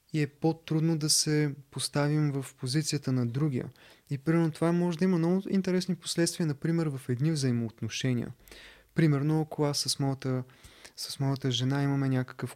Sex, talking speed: male, 160 wpm